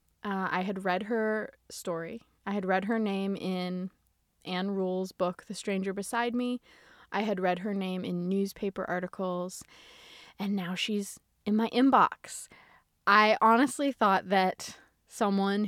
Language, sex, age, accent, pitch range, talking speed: English, female, 20-39, American, 190-225 Hz, 145 wpm